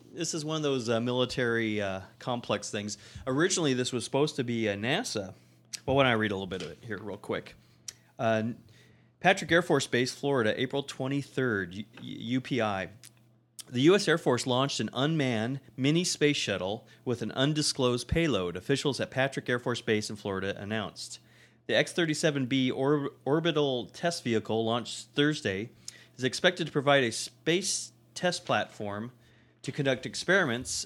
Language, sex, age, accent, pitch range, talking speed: English, male, 30-49, American, 110-145 Hz, 160 wpm